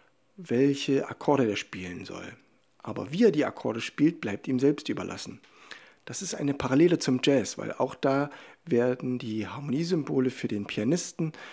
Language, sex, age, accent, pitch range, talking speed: German, male, 60-79, German, 120-150 Hz, 155 wpm